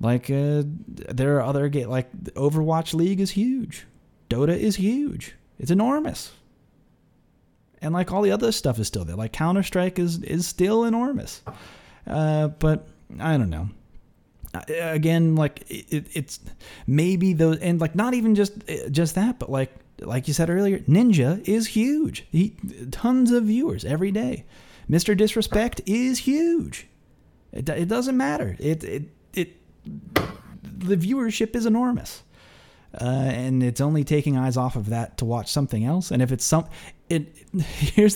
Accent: American